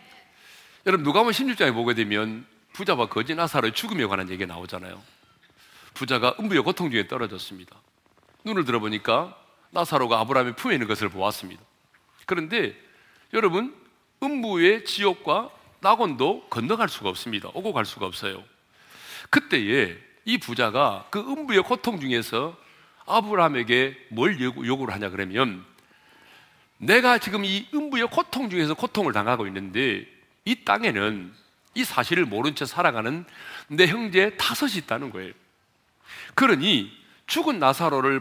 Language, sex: Korean, male